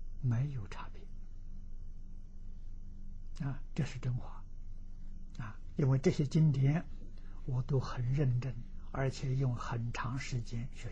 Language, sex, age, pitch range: Chinese, male, 60-79, 95-135 Hz